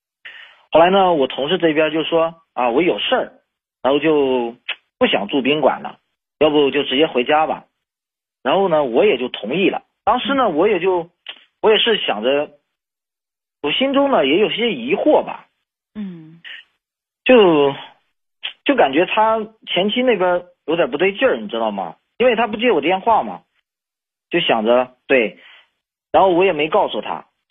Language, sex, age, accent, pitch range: Chinese, male, 40-59, native, 130-185 Hz